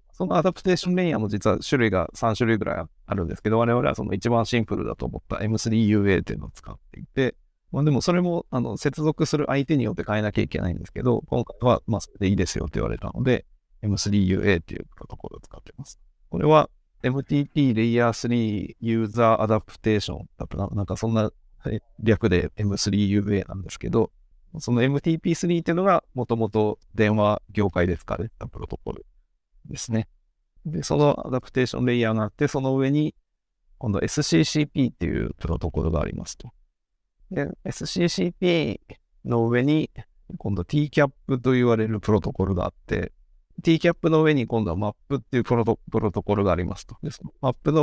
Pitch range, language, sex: 100-140 Hz, Japanese, male